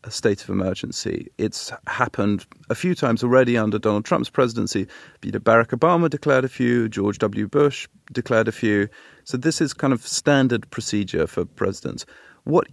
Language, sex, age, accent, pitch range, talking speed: English, male, 30-49, British, 105-130 Hz, 165 wpm